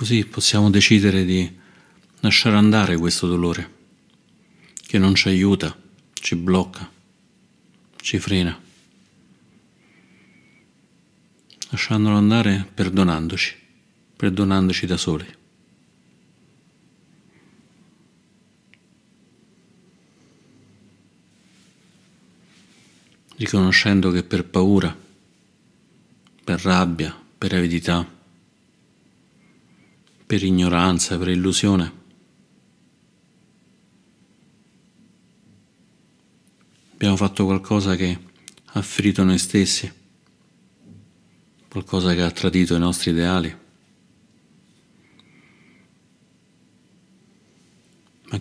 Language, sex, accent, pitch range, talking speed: Italian, male, native, 90-100 Hz, 60 wpm